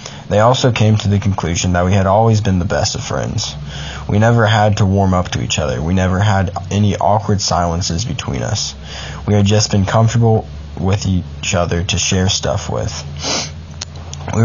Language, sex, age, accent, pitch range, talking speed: English, male, 20-39, American, 90-110 Hz, 185 wpm